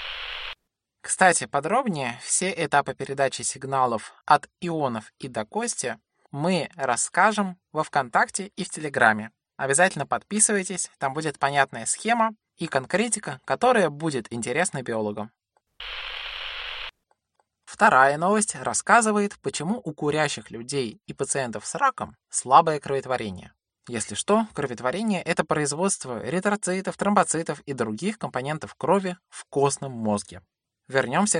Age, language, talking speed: 20-39, Russian, 110 wpm